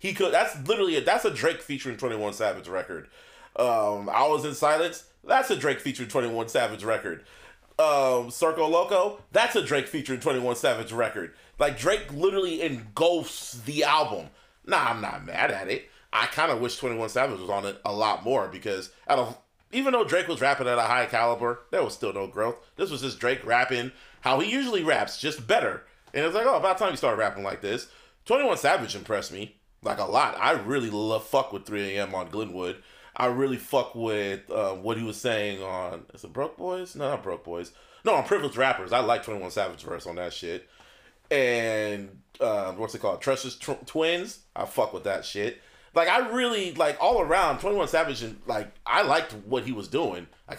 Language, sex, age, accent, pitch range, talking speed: English, male, 30-49, American, 110-160 Hz, 205 wpm